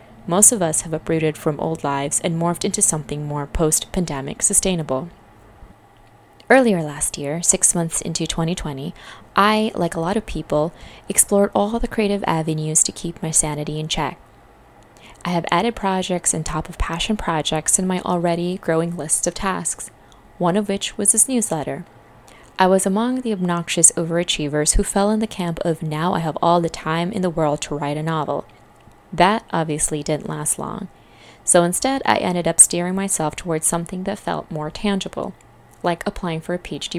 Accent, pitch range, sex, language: American, 150-190 Hz, female, English